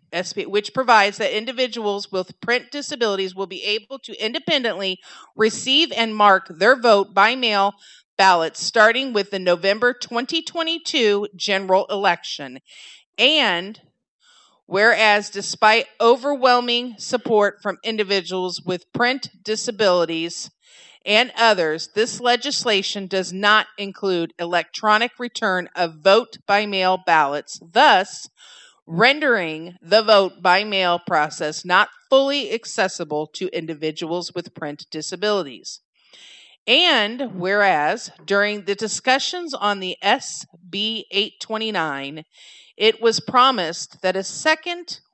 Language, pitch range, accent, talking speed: English, 180-235 Hz, American, 100 wpm